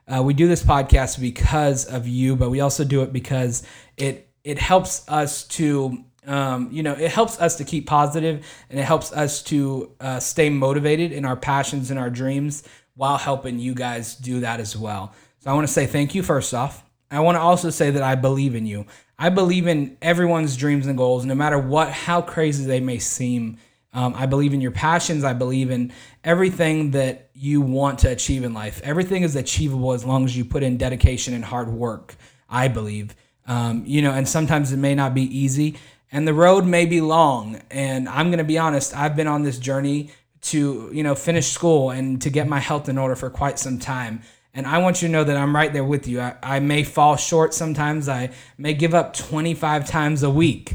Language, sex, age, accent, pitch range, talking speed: English, male, 20-39, American, 130-150 Hz, 220 wpm